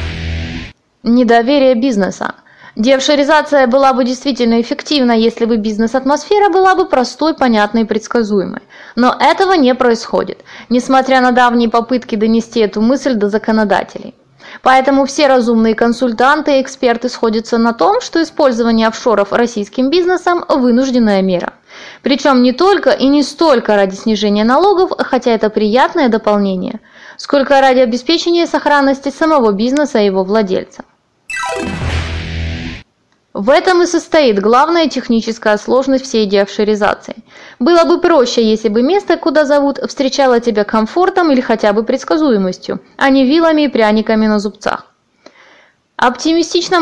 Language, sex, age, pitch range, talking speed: Russian, female, 20-39, 220-285 Hz, 125 wpm